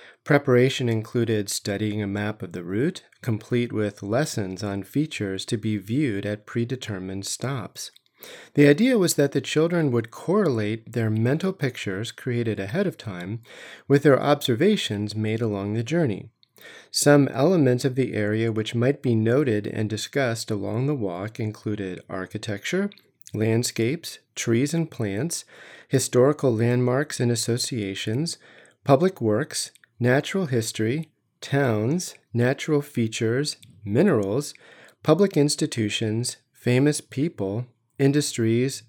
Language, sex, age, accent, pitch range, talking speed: English, male, 40-59, American, 110-140 Hz, 120 wpm